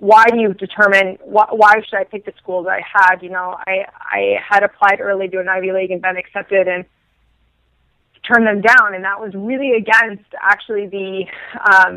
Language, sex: English, female